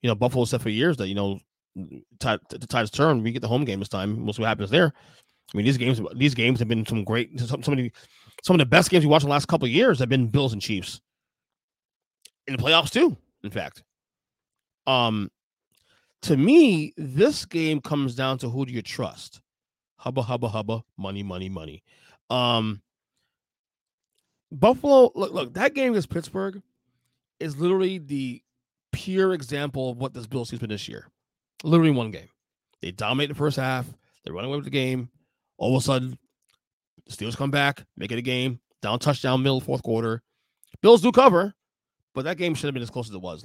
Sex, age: male, 30-49